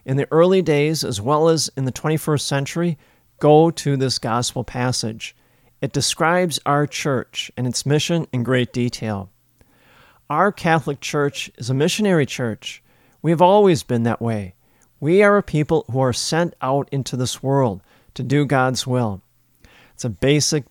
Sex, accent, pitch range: male, American, 120-155 Hz